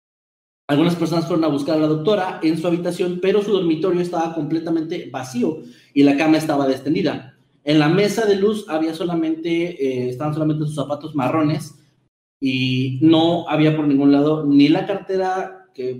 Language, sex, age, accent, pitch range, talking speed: Spanish, male, 30-49, Mexican, 135-175 Hz, 170 wpm